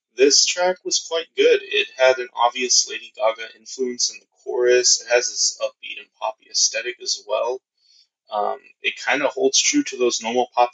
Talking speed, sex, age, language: 190 wpm, male, 20-39, English